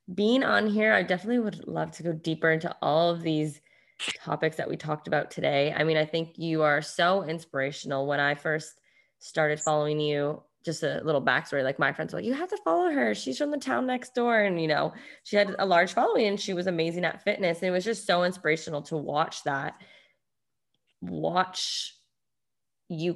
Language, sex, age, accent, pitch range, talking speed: English, female, 20-39, American, 150-180 Hz, 205 wpm